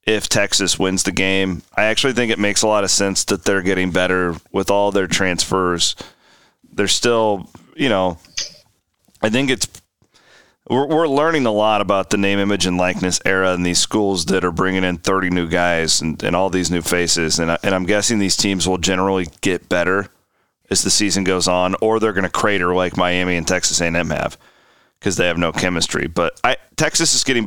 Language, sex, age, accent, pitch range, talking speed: English, male, 30-49, American, 95-120 Hz, 205 wpm